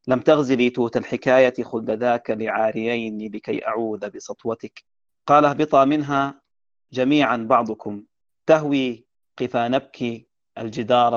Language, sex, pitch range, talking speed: Arabic, male, 110-130 Hz, 100 wpm